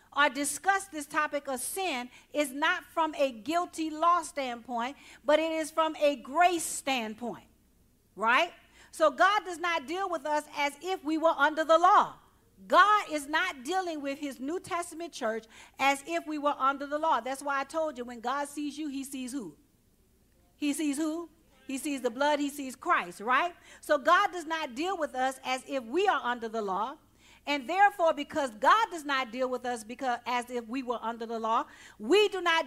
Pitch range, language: 270-325 Hz, English